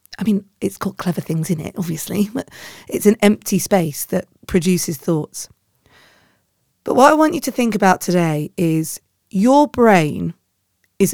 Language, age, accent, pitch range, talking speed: English, 40-59, British, 170-230 Hz, 160 wpm